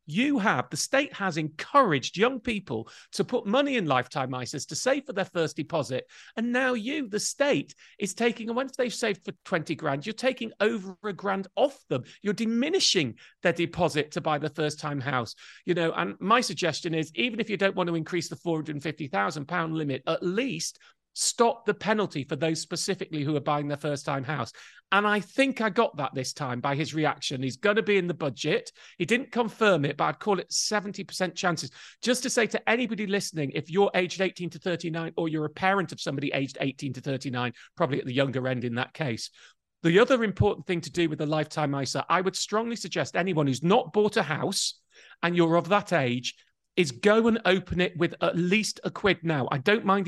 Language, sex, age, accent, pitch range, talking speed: English, male, 40-59, British, 150-210 Hz, 210 wpm